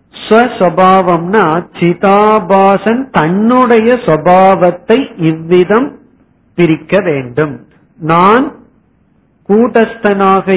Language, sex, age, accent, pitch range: Tamil, male, 50-69, native, 155-210 Hz